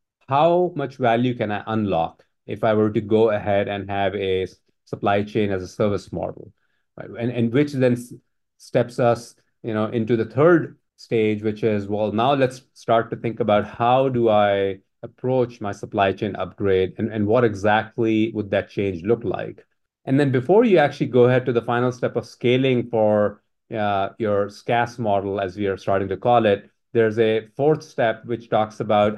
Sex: male